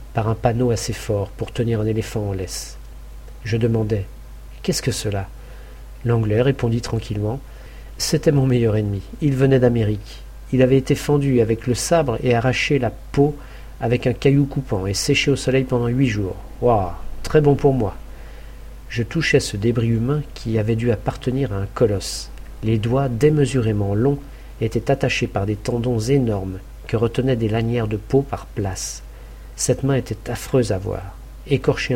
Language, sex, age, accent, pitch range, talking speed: French, male, 50-69, French, 100-130 Hz, 170 wpm